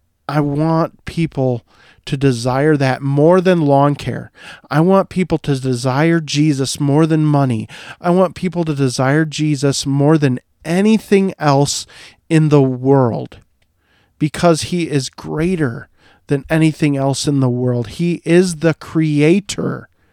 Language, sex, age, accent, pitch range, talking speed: English, male, 40-59, American, 115-160 Hz, 135 wpm